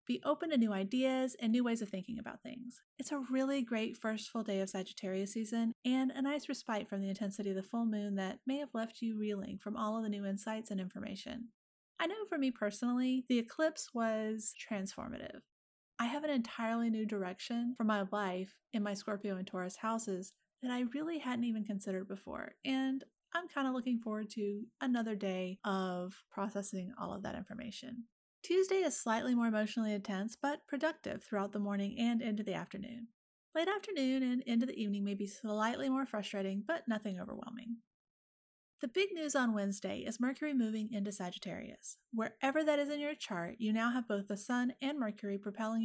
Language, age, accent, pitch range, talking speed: English, 30-49, American, 205-250 Hz, 190 wpm